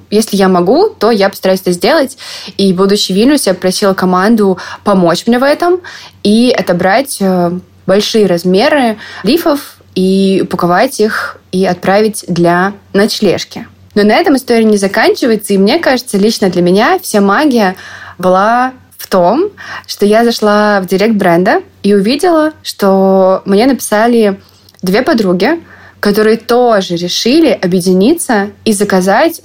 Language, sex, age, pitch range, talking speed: Russian, female, 20-39, 190-235 Hz, 135 wpm